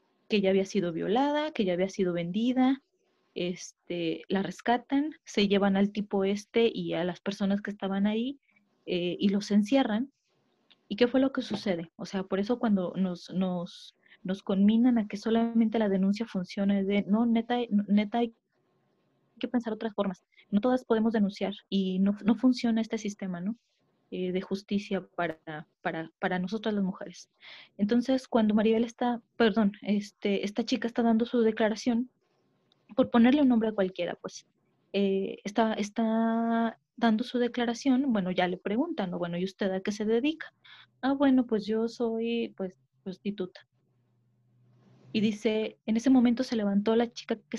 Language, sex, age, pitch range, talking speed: Spanish, female, 30-49, 195-235 Hz, 170 wpm